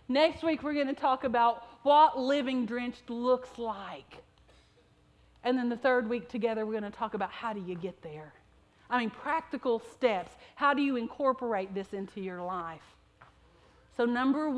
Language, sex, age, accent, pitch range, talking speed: English, female, 40-59, American, 230-295 Hz, 175 wpm